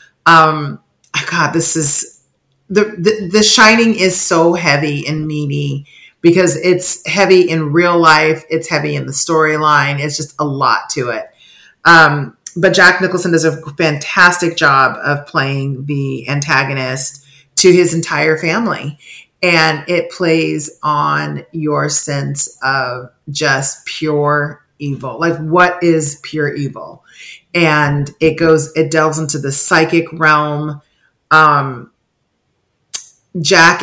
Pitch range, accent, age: 145-170 Hz, American, 40-59